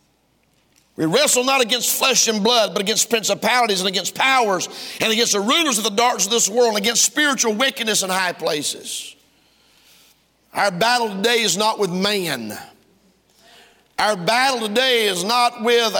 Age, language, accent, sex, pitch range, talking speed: 50-69, English, American, male, 215-255 Hz, 160 wpm